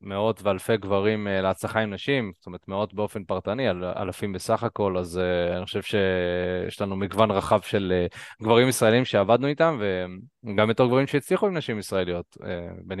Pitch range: 95-120 Hz